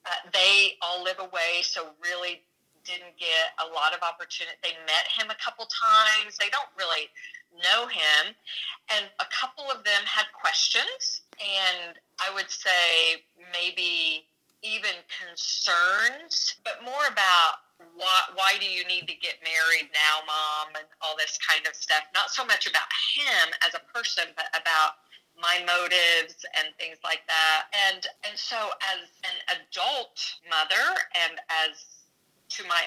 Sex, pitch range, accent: female, 165-270 Hz, American